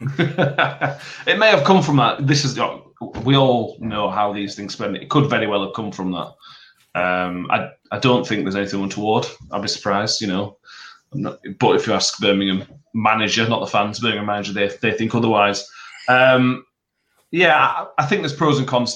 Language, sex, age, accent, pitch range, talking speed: English, male, 30-49, British, 100-130 Hz, 190 wpm